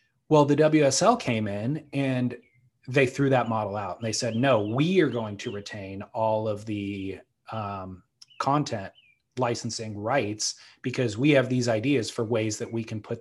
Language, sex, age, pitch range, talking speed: English, male, 30-49, 115-140 Hz, 175 wpm